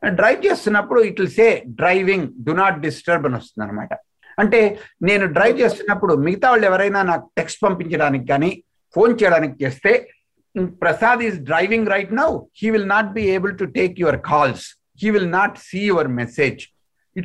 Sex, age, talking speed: male, 60-79, 150 wpm